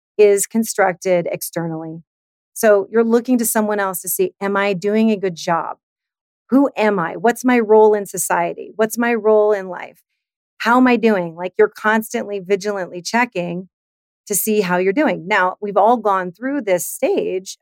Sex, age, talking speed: female, 40-59, 175 wpm